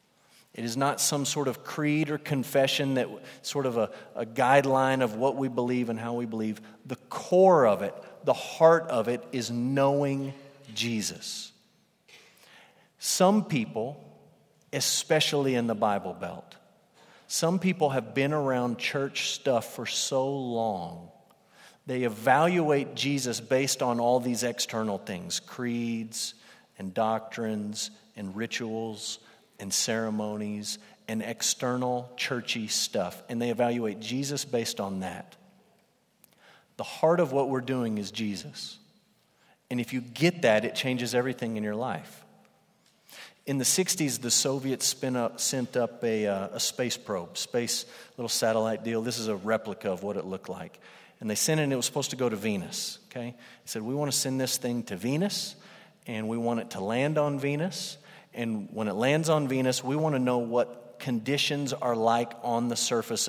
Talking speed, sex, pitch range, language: 160 wpm, male, 110-140 Hz, English